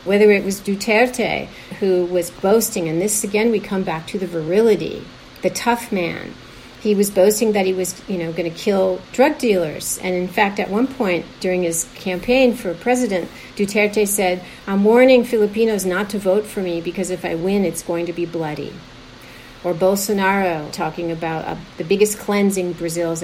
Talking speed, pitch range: 185 wpm, 175-220 Hz